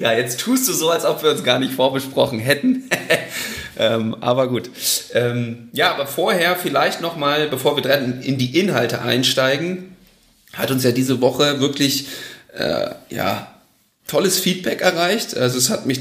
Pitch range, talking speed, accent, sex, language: 120-140 Hz, 160 wpm, German, male, German